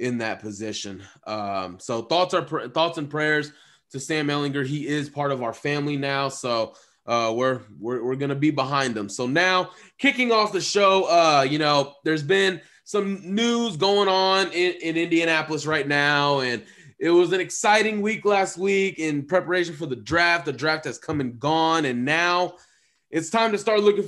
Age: 20-39